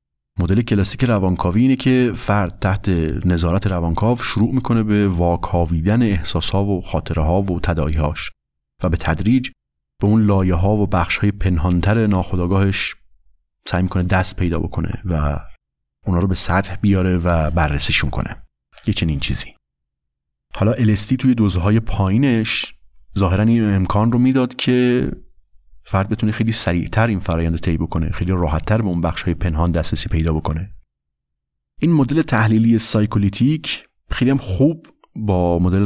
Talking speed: 150 wpm